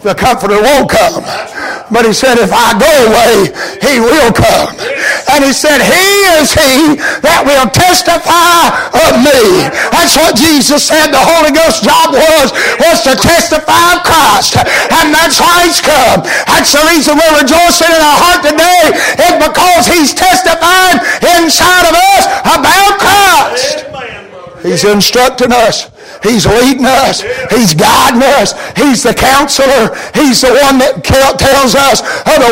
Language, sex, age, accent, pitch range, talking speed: English, male, 50-69, American, 275-330 Hz, 150 wpm